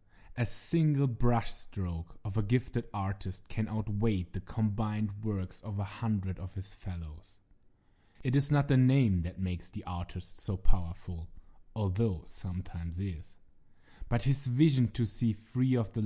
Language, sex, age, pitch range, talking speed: English, male, 20-39, 95-125 Hz, 150 wpm